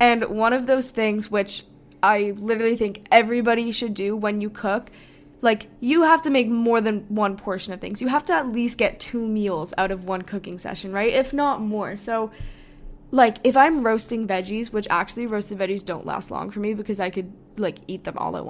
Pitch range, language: 200-250 Hz, English